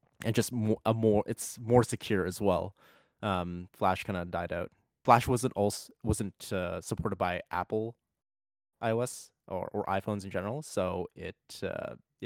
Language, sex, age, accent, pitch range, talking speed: English, male, 20-39, American, 90-105 Hz, 155 wpm